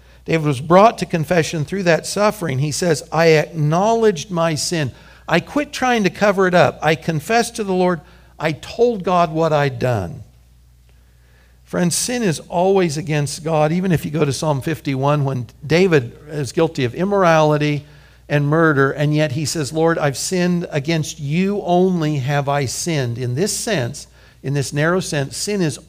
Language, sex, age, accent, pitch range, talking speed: English, male, 60-79, American, 140-170 Hz, 175 wpm